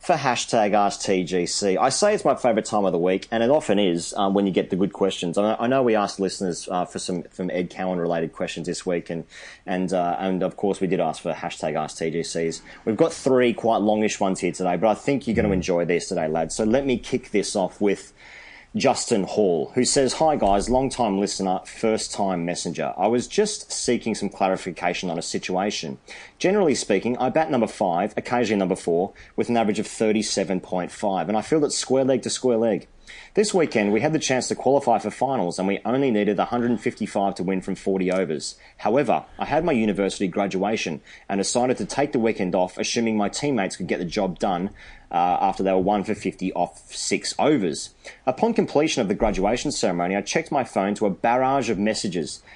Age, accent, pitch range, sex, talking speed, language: 30-49, Australian, 95-125 Hz, male, 215 wpm, English